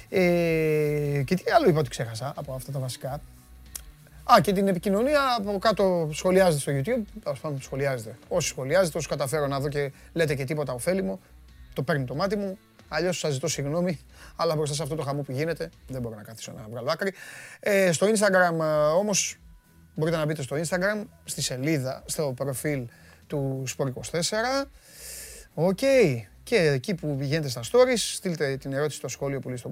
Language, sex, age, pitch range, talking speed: Greek, male, 30-49, 135-180 Hz, 180 wpm